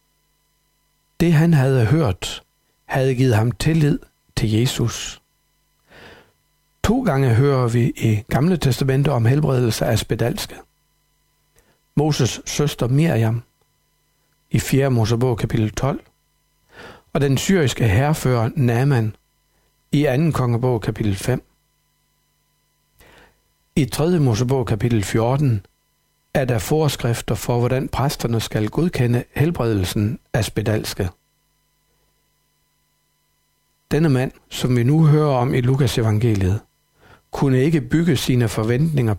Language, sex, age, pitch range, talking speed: Danish, male, 60-79, 115-140 Hz, 105 wpm